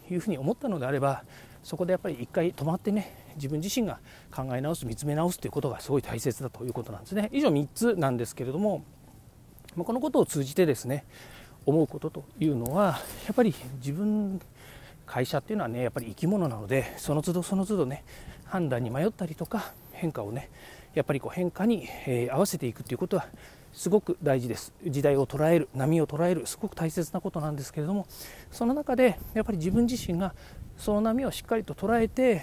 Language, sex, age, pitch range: Japanese, male, 40-59, 135-195 Hz